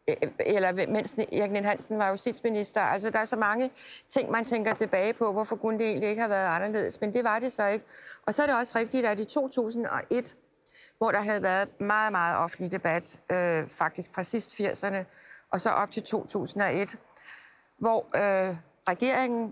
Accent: native